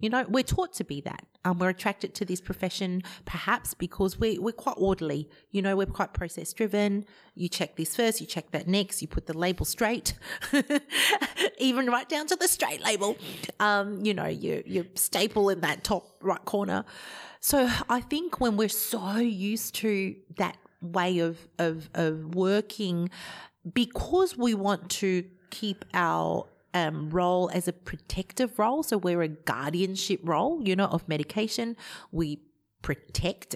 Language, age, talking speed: English, 30-49, 165 wpm